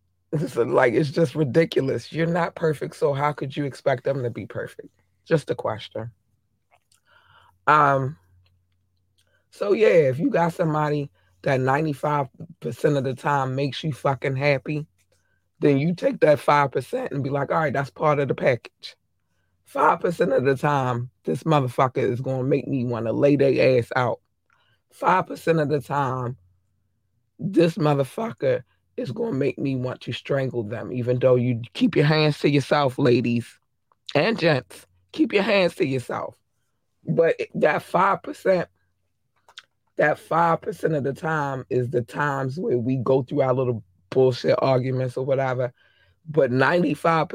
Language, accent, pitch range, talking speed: English, American, 120-150 Hz, 155 wpm